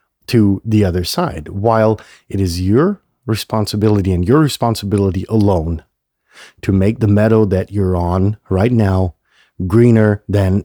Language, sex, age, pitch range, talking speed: English, male, 40-59, 95-120 Hz, 135 wpm